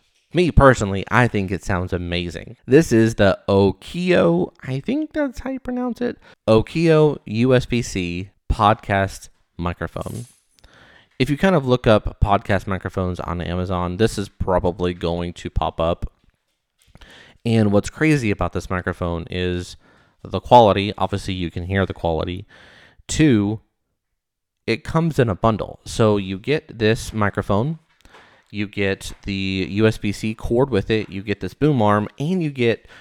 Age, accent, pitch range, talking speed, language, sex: 30-49, American, 95-130 Hz, 145 wpm, English, male